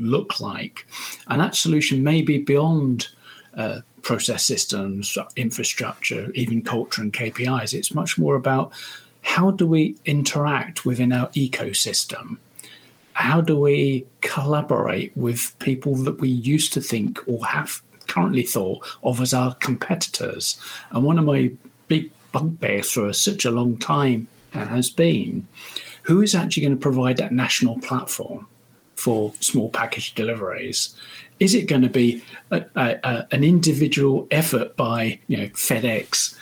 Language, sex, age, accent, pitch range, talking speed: English, male, 50-69, British, 120-150 Hz, 135 wpm